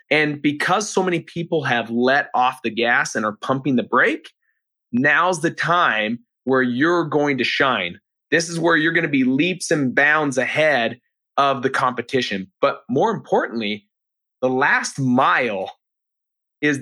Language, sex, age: English, male, 30-49